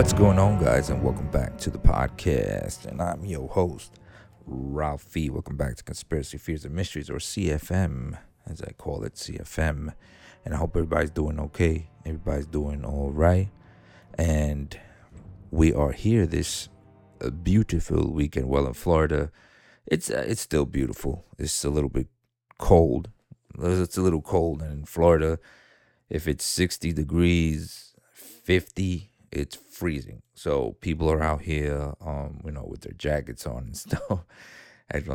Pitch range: 75-95 Hz